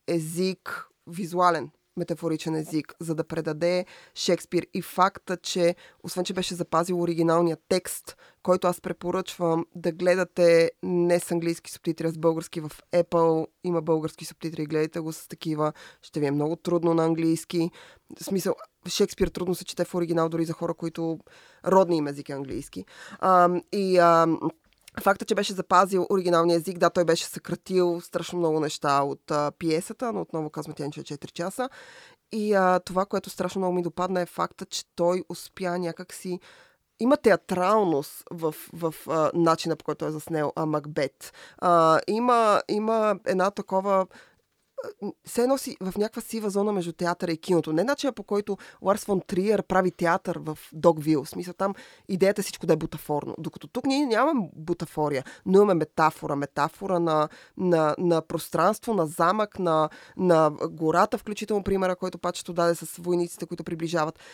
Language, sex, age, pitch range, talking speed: Bulgarian, female, 20-39, 165-190 Hz, 160 wpm